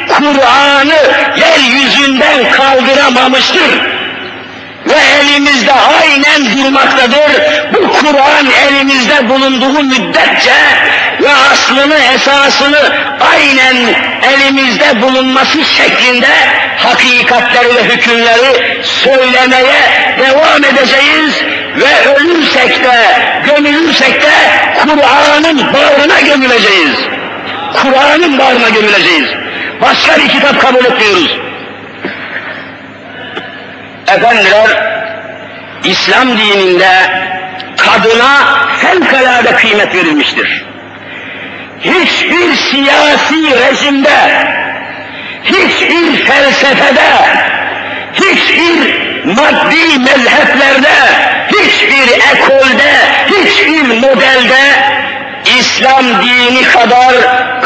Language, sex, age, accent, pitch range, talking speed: Turkish, male, 50-69, native, 255-295 Hz, 65 wpm